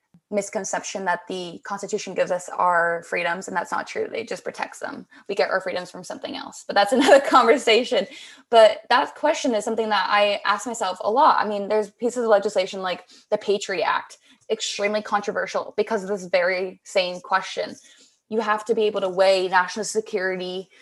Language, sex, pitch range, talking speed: English, female, 190-230 Hz, 185 wpm